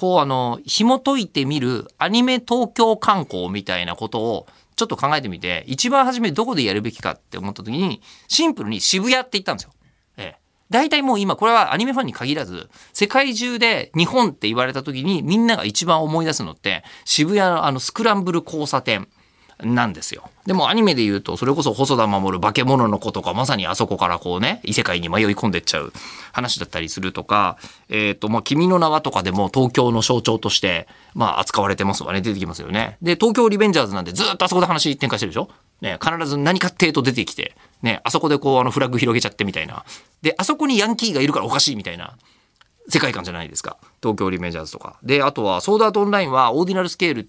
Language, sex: Japanese, male